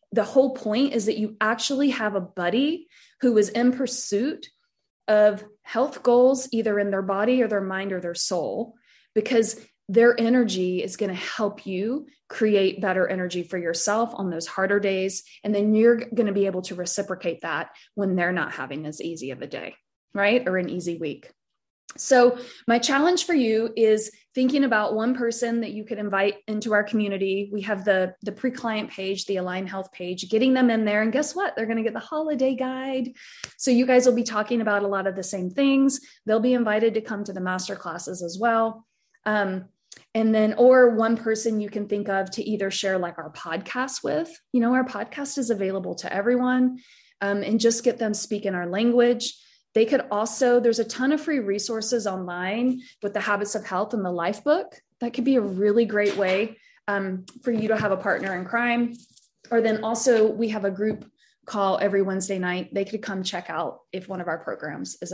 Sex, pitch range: female, 195-245 Hz